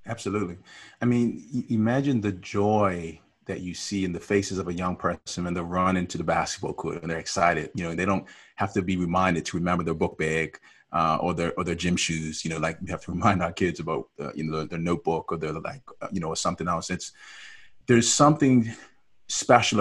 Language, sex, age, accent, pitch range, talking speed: English, male, 30-49, American, 90-115 Hz, 235 wpm